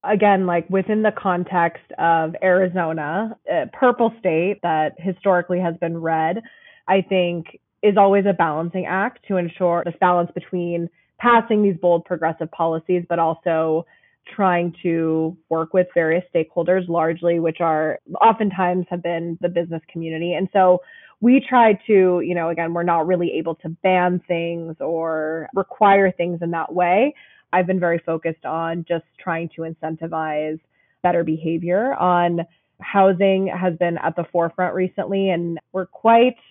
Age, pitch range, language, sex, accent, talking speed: 20-39, 165-190 Hz, English, female, American, 150 wpm